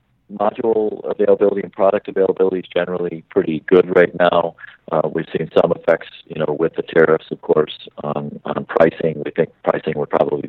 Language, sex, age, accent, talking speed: English, male, 40-59, American, 175 wpm